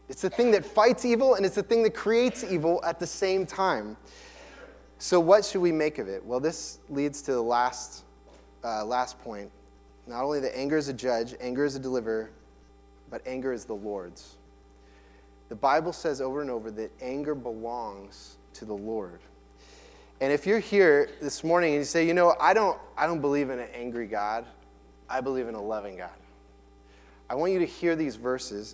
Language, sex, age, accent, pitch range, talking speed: English, male, 20-39, American, 110-170 Hz, 195 wpm